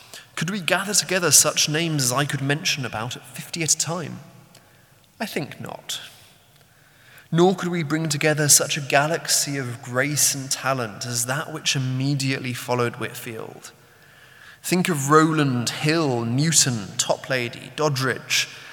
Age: 20-39